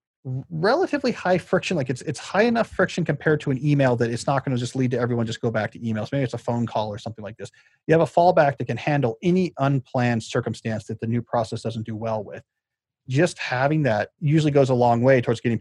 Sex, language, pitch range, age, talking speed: male, English, 120-160 Hz, 30-49, 245 wpm